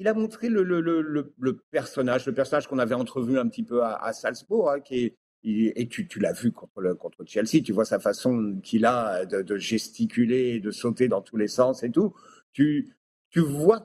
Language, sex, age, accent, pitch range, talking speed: French, male, 50-69, French, 120-175 Hz, 230 wpm